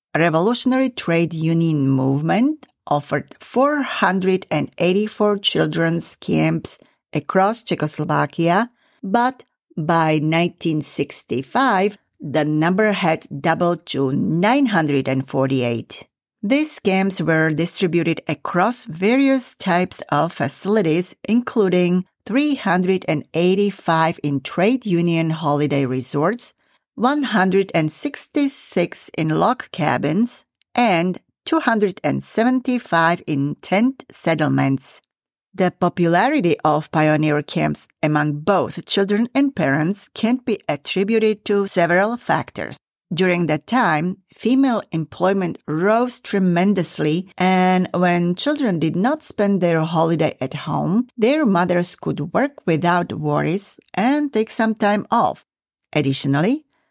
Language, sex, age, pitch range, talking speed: English, female, 50-69, 160-225 Hz, 95 wpm